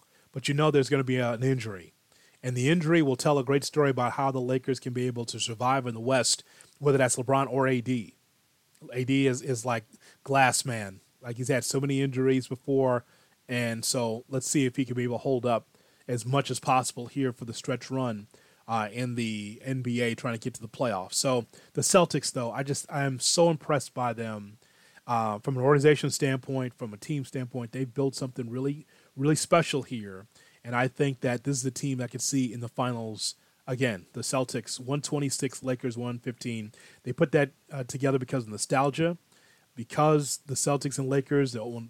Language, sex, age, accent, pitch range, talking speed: English, male, 30-49, American, 120-140 Hz, 200 wpm